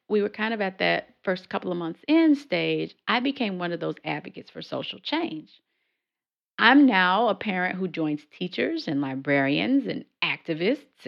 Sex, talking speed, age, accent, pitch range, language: female, 175 wpm, 40-59, American, 150-205 Hz, English